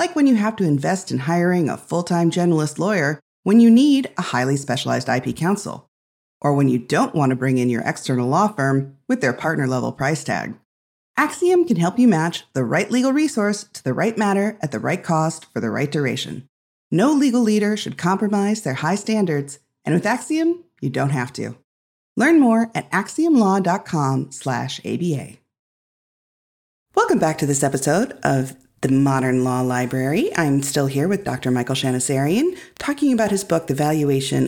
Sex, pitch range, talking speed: female, 135-195 Hz, 180 wpm